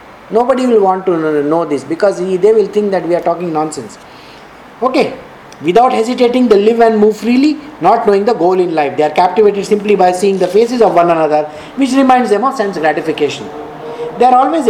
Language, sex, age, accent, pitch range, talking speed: English, male, 50-69, Indian, 170-220 Hz, 200 wpm